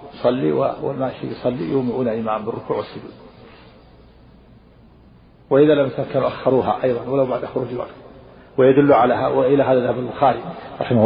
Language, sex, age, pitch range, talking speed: Arabic, male, 50-69, 120-140 Hz, 125 wpm